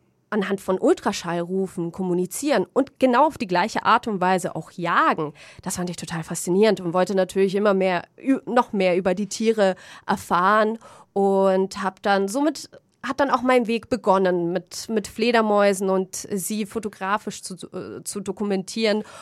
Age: 30-49